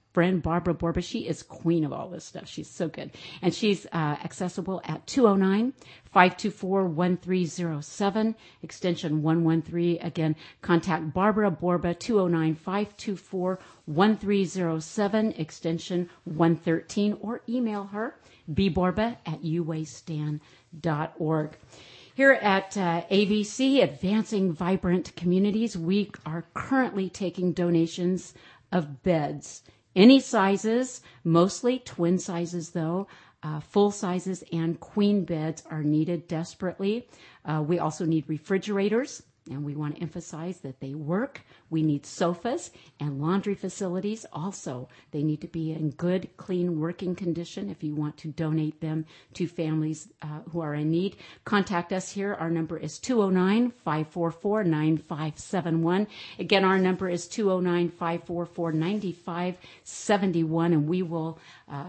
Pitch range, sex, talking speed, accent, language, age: 160-195 Hz, female, 115 wpm, American, English, 50-69